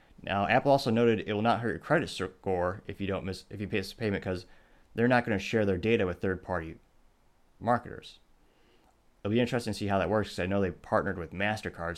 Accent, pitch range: American, 90-105 Hz